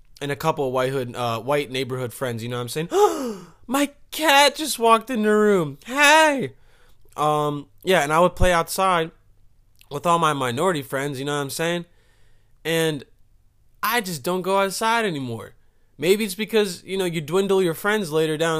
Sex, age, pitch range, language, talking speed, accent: male, 20-39, 145-195 Hz, English, 185 wpm, American